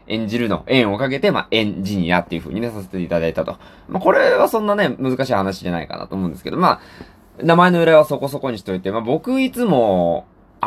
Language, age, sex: Japanese, 20-39, male